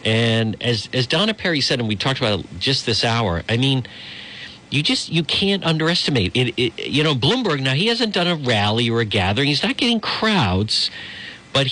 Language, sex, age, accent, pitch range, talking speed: English, male, 50-69, American, 115-170 Hz, 205 wpm